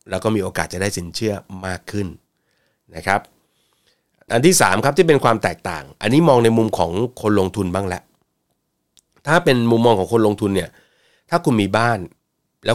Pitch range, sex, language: 95-115 Hz, male, Thai